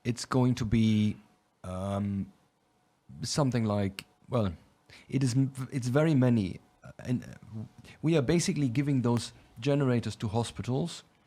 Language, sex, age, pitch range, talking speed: Ukrainian, male, 30-49, 110-135 Hz, 120 wpm